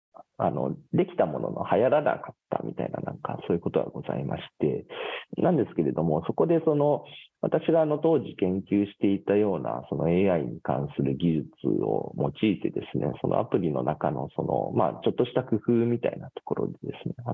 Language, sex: Japanese, male